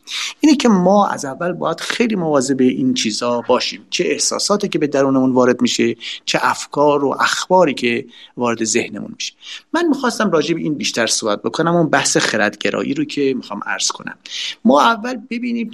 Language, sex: Persian, male